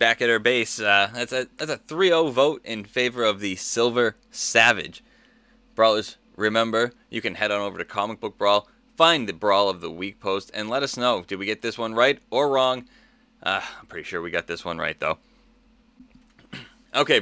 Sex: male